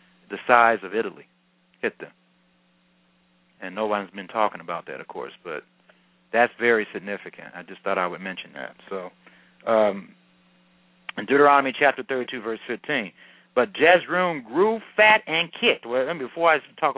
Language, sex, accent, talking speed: English, male, American, 150 wpm